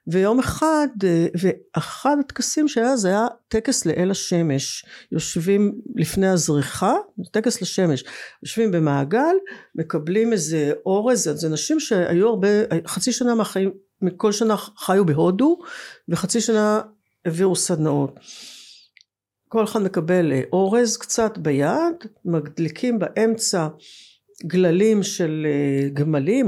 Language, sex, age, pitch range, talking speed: Hebrew, female, 60-79, 160-225 Hz, 100 wpm